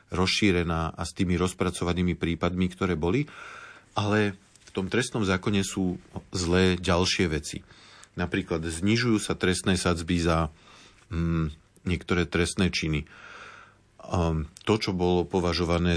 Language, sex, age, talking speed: Slovak, male, 40-59, 115 wpm